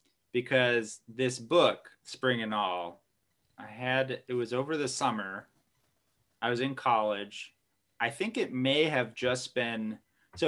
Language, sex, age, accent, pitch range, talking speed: English, male, 20-39, American, 110-125 Hz, 145 wpm